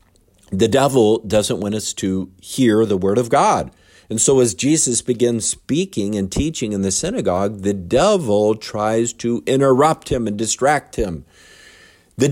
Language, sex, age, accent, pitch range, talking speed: English, male, 50-69, American, 105-150 Hz, 155 wpm